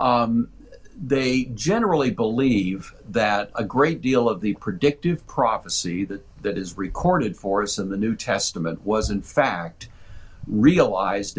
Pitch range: 95-130 Hz